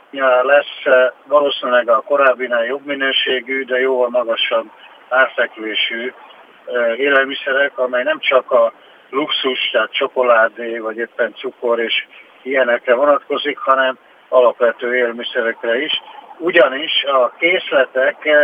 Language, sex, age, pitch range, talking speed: Hungarian, male, 60-79, 120-145 Hz, 105 wpm